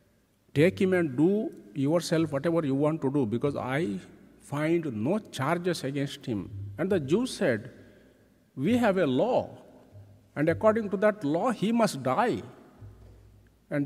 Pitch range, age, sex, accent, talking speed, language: 120-175 Hz, 50-69, male, Indian, 145 wpm, English